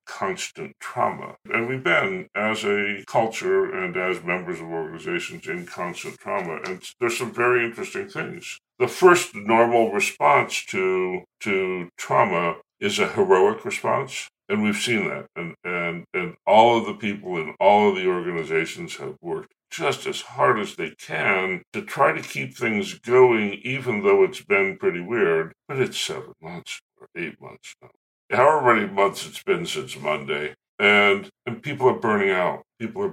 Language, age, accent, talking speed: English, 60-79, American, 165 wpm